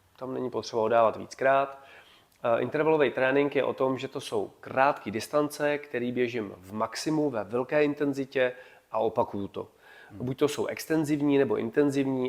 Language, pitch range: Czech, 115-145 Hz